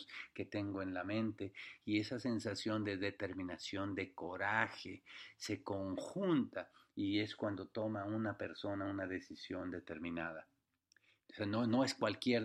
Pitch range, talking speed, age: 100-115 Hz, 140 wpm, 40-59